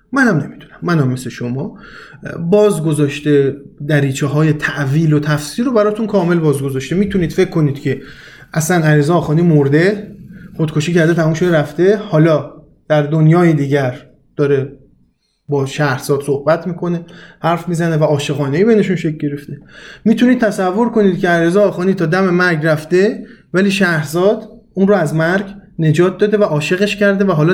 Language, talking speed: Persian, 150 wpm